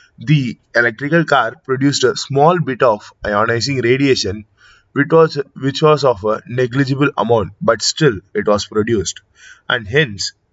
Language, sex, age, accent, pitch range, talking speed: Tamil, male, 20-39, native, 105-140 Hz, 140 wpm